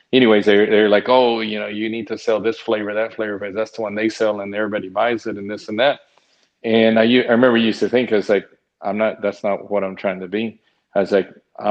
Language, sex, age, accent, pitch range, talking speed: English, male, 40-59, American, 100-115 Hz, 260 wpm